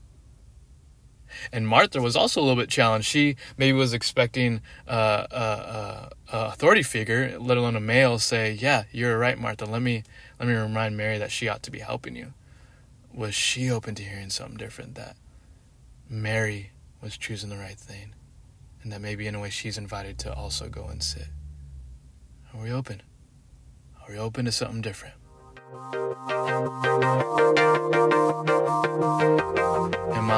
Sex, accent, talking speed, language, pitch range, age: male, American, 150 wpm, English, 105-125 Hz, 20-39